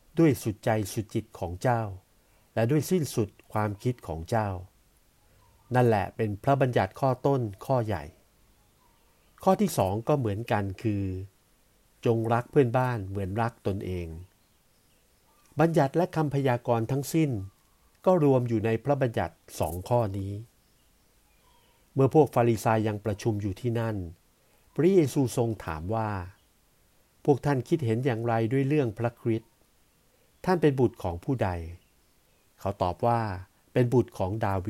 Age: 60-79